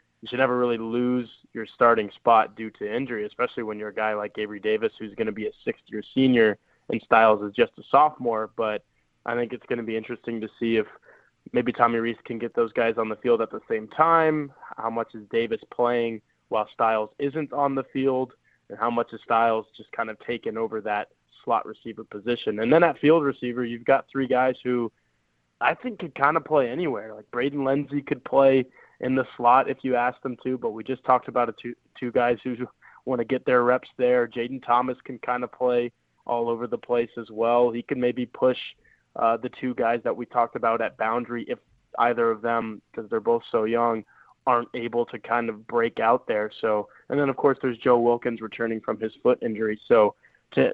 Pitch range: 115-130 Hz